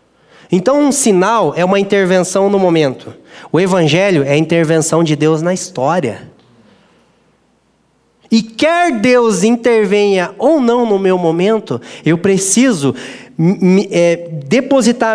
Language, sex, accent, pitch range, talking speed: Portuguese, male, Brazilian, 170-240 Hz, 115 wpm